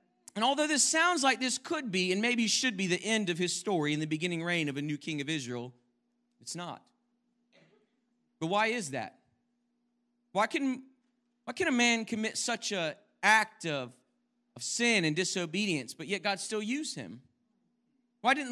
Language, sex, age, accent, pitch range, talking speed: English, male, 40-59, American, 190-245 Hz, 180 wpm